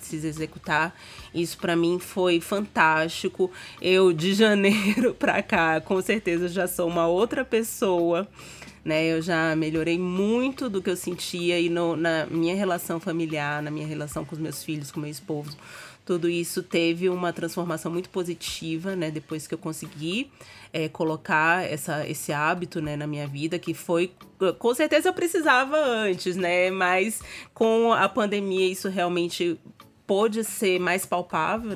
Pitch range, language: 165-190 Hz, Portuguese